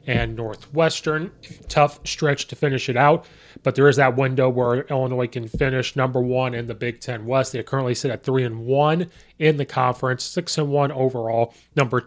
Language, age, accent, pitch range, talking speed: English, 30-49, American, 125-150 Hz, 195 wpm